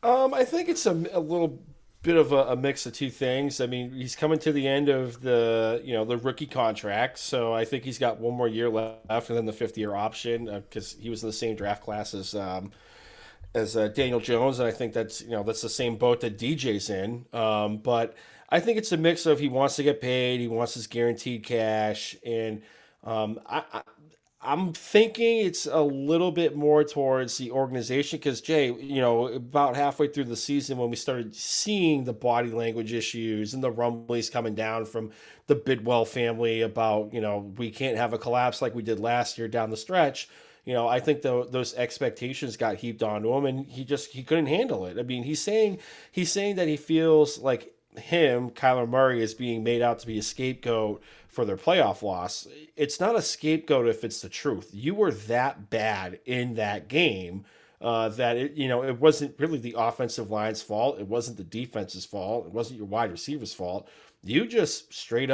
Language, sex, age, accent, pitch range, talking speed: English, male, 30-49, American, 115-145 Hz, 210 wpm